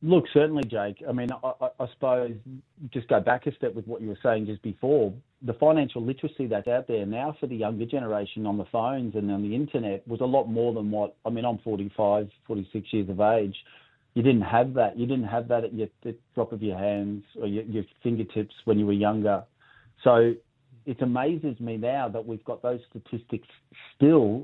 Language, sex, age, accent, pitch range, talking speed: English, male, 40-59, Australian, 105-130 Hz, 210 wpm